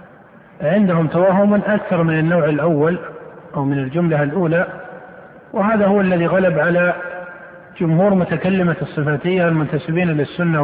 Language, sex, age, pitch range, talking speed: Arabic, male, 50-69, 155-185 Hz, 115 wpm